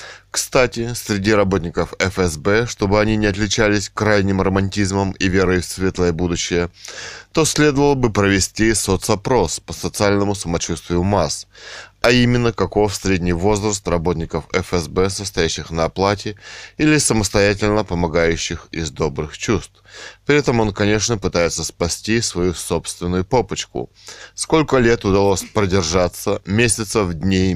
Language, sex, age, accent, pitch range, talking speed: Russian, male, 20-39, native, 95-110 Hz, 120 wpm